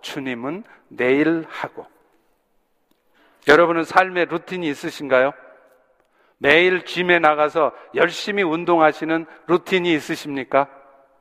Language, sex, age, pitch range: Korean, male, 50-69, 155-210 Hz